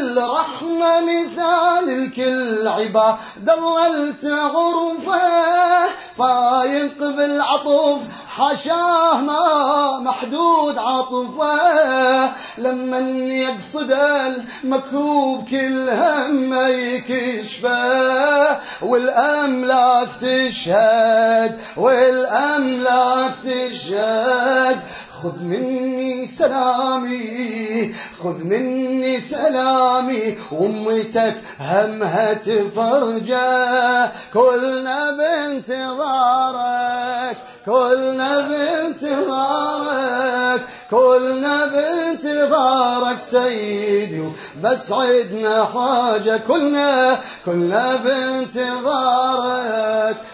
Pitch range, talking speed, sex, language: 240-285 Hz, 50 wpm, male, Arabic